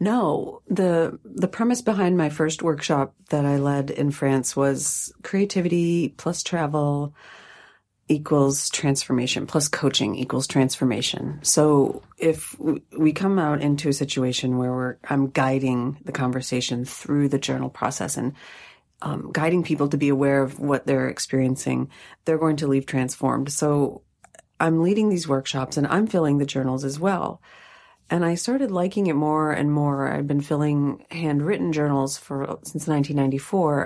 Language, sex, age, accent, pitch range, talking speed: English, female, 30-49, American, 135-160 Hz, 150 wpm